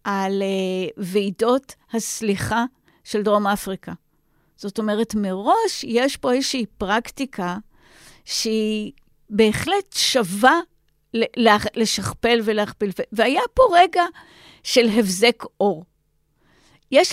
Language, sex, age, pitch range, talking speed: Hebrew, female, 50-69, 205-255 Hz, 90 wpm